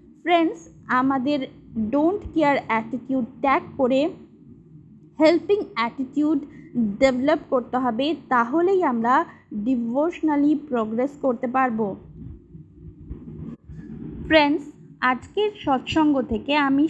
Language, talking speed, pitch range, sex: Bengali, 60 wpm, 235-305 Hz, female